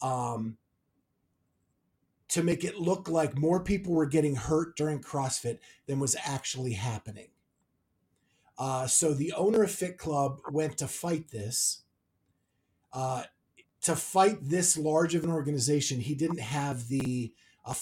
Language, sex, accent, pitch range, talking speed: English, male, American, 130-160 Hz, 140 wpm